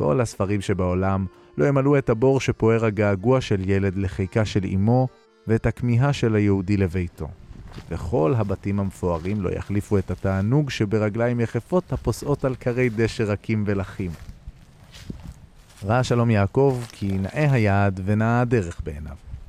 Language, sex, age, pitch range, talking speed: Hebrew, male, 30-49, 95-130 Hz, 130 wpm